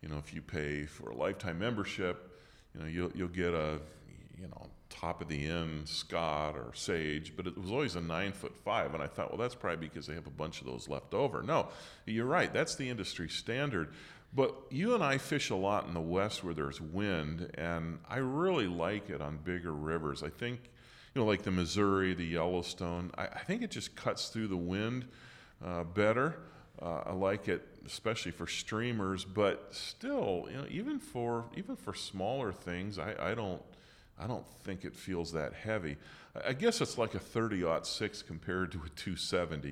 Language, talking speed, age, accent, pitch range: English, 200 wpm, 40-59, American, 80-110 Hz